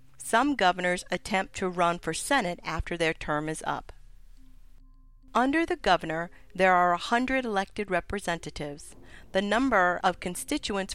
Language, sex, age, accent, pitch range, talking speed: English, female, 50-69, American, 165-205 Hz, 135 wpm